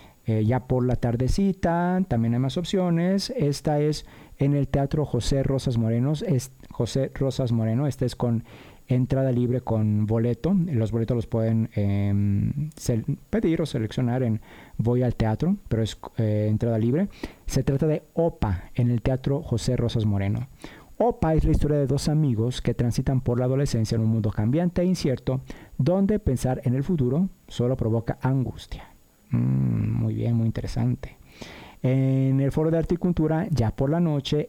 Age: 40-59